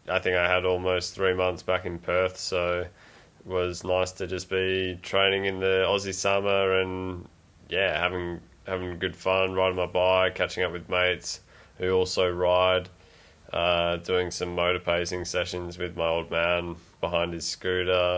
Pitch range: 85-90 Hz